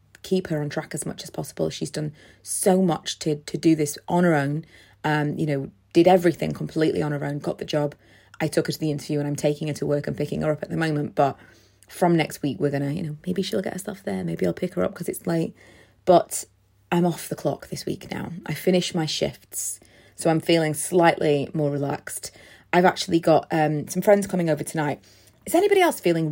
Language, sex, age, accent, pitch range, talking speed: English, female, 30-49, British, 145-190 Hz, 235 wpm